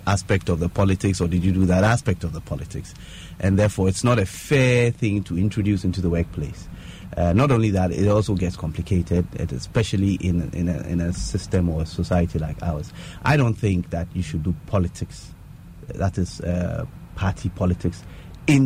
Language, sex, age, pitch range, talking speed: English, male, 30-49, 90-105 Hz, 185 wpm